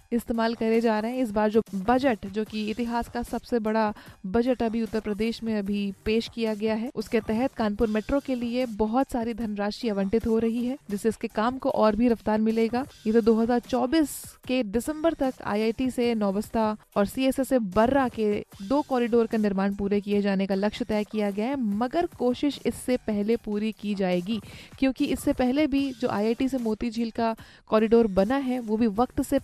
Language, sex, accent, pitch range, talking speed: Hindi, female, native, 215-250 Hz, 200 wpm